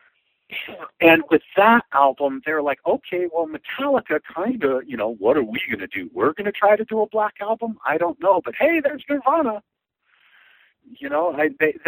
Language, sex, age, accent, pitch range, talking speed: English, male, 50-69, American, 130-215 Hz, 195 wpm